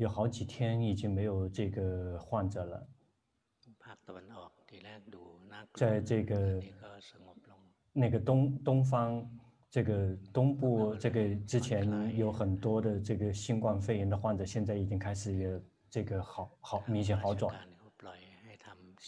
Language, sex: Chinese, male